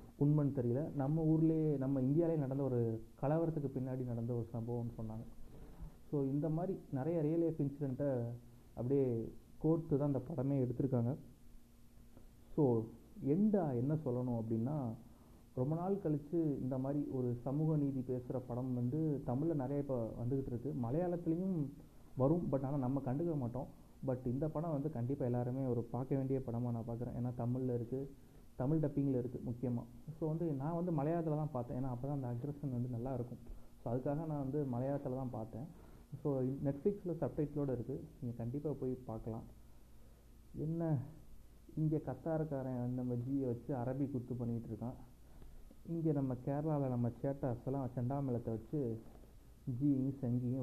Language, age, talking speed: Tamil, 30-49, 145 wpm